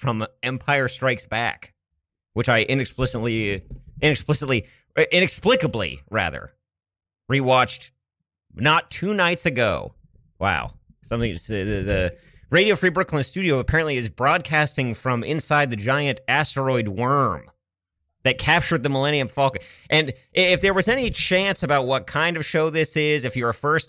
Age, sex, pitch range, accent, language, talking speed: 30-49, male, 120-175 Hz, American, English, 135 wpm